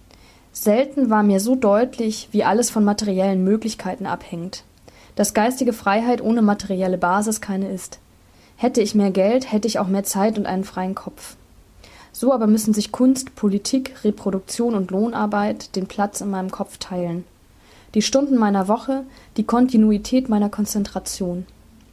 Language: English